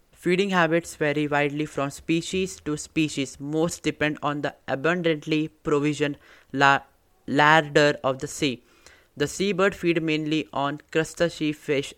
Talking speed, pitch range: 130 wpm, 140-160 Hz